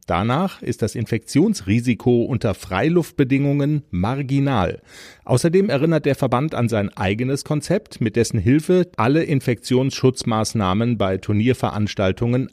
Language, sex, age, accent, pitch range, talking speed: German, male, 40-59, German, 110-150 Hz, 105 wpm